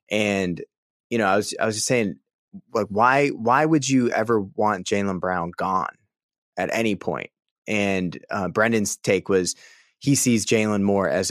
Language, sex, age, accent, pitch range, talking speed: English, male, 20-39, American, 95-110 Hz, 170 wpm